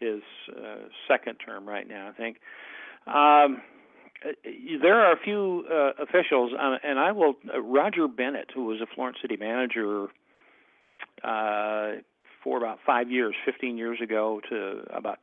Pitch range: 105-130 Hz